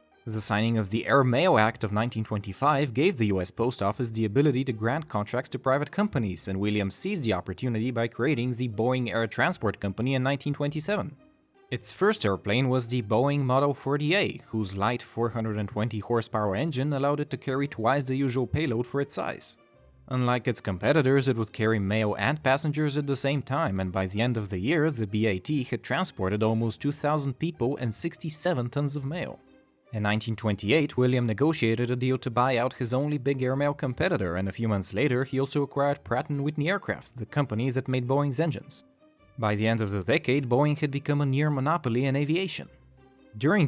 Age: 20-39